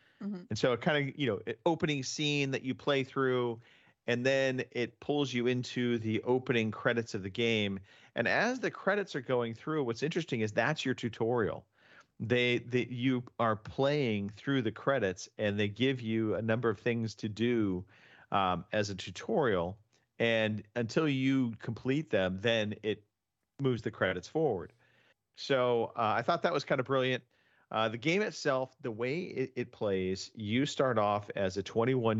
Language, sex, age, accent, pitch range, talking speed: English, male, 40-59, American, 100-125 Hz, 180 wpm